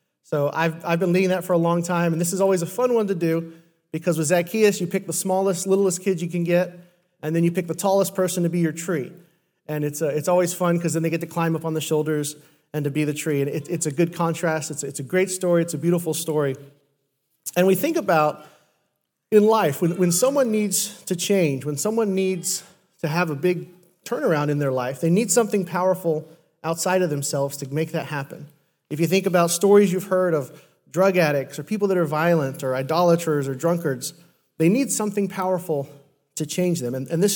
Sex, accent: male, American